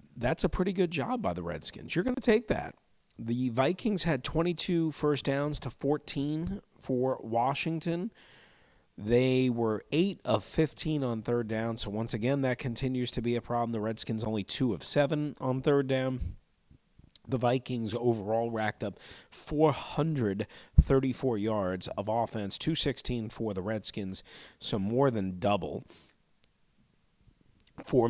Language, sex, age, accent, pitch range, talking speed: English, male, 40-59, American, 100-130 Hz, 145 wpm